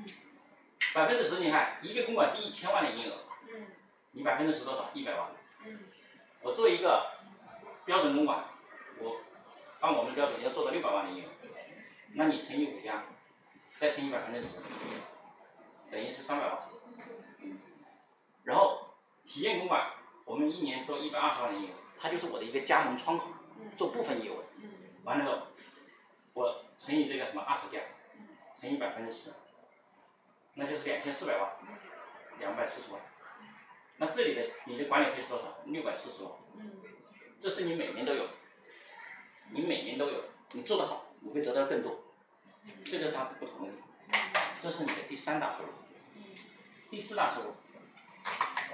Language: Chinese